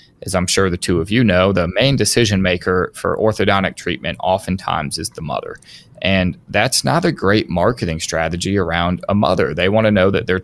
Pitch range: 90-110 Hz